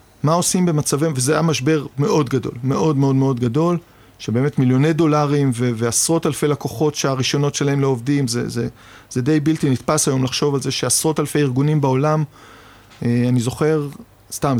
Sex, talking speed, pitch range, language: male, 165 wpm, 125-160 Hz, Hebrew